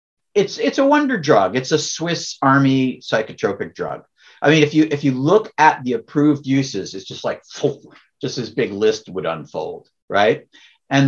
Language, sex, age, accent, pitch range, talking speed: English, male, 50-69, American, 125-155 Hz, 180 wpm